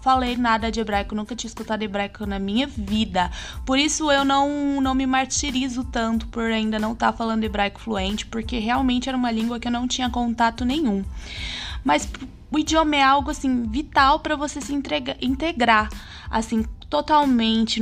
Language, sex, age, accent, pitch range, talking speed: Portuguese, female, 20-39, Brazilian, 240-310 Hz, 175 wpm